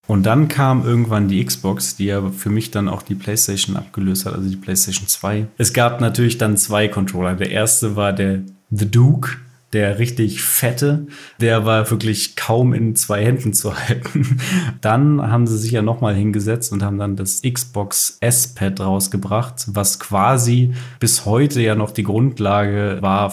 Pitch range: 100-120 Hz